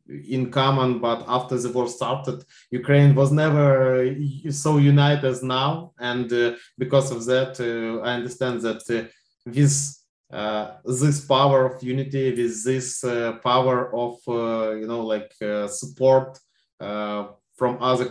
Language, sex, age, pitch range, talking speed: English, male, 20-39, 120-135 Hz, 145 wpm